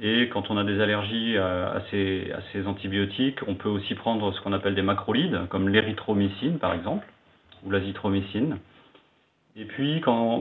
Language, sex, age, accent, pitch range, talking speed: French, male, 40-59, French, 95-115 Hz, 180 wpm